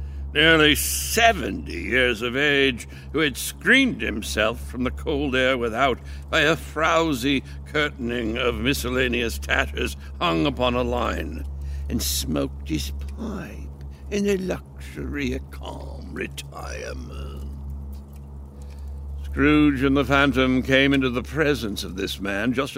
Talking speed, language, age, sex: 125 wpm, English, 60-79, male